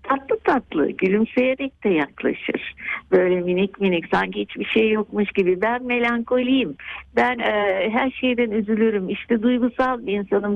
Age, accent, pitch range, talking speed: 60-79, native, 185-250 Hz, 135 wpm